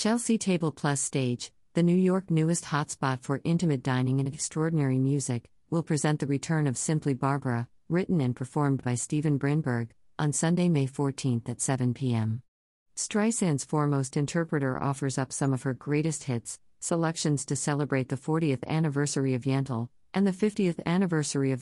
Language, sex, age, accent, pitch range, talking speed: English, female, 50-69, American, 130-160 Hz, 160 wpm